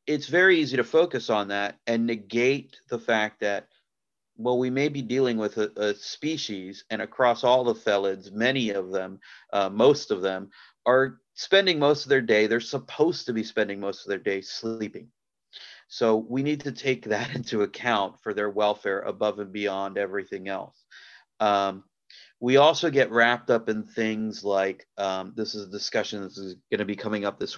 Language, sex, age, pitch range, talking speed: English, male, 30-49, 105-130 Hz, 185 wpm